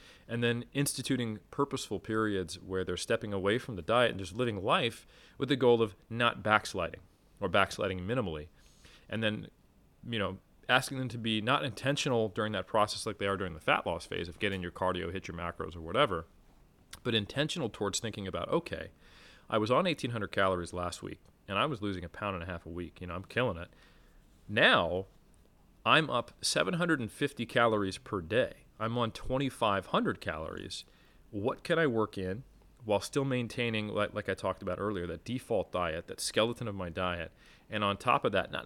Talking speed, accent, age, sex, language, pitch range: 190 wpm, American, 30-49, male, English, 90-115 Hz